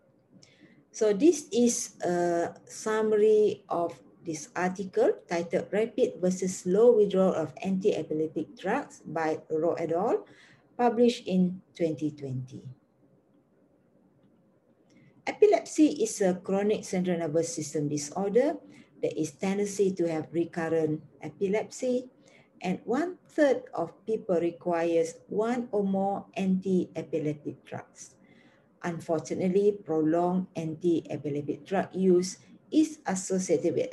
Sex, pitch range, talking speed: female, 165-215 Hz, 100 wpm